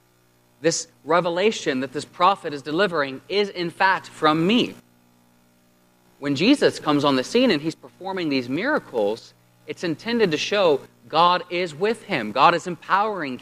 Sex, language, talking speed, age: male, English, 150 wpm, 30-49